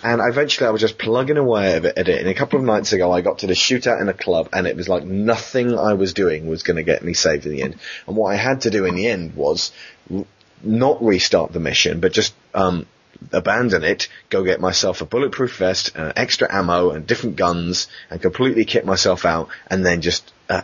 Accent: British